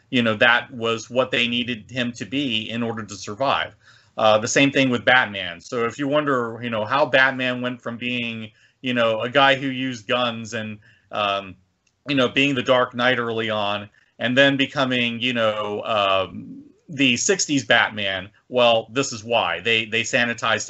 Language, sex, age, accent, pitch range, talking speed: English, male, 30-49, American, 105-130 Hz, 185 wpm